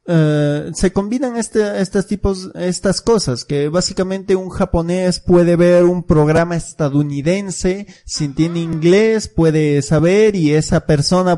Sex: male